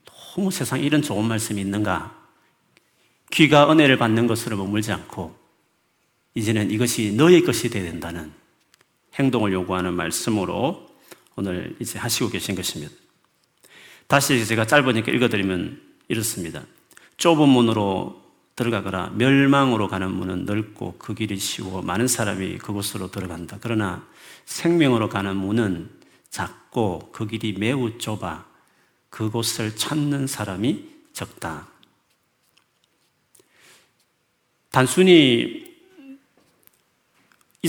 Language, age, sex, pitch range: Korean, 40-59, male, 100-140 Hz